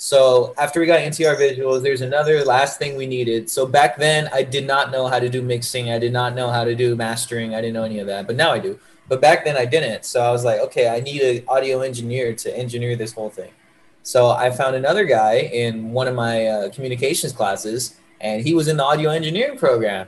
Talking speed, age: 240 wpm, 20-39